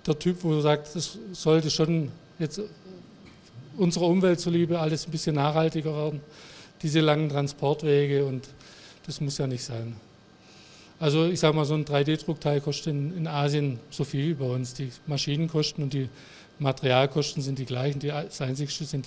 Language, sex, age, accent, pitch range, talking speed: German, male, 50-69, German, 125-160 Hz, 165 wpm